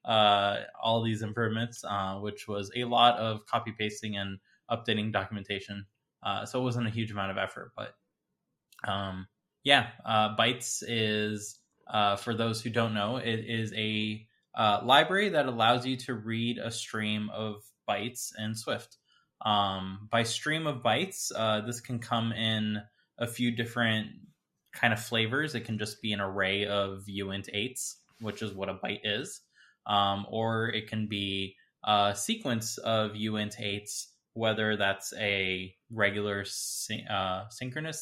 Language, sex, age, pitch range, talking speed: English, male, 20-39, 105-120 Hz, 155 wpm